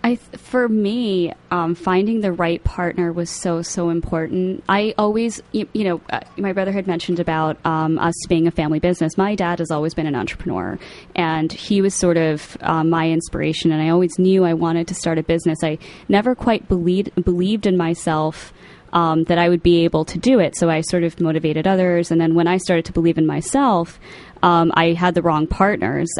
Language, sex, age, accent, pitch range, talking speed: English, female, 20-39, American, 165-190 Hz, 210 wpm